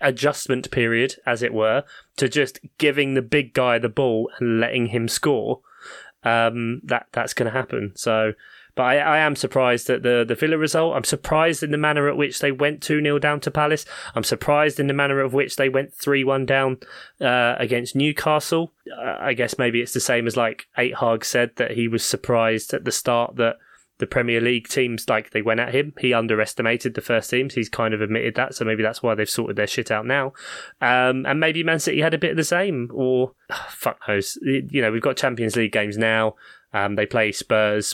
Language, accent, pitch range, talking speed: English, British, 115-145 Hz, 215 wpm